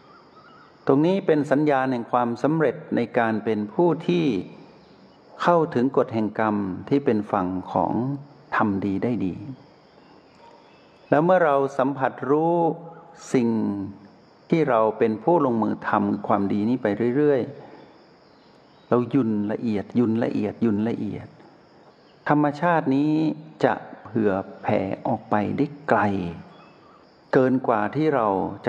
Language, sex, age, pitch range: Thai, male, 60-79, 105-145 Hz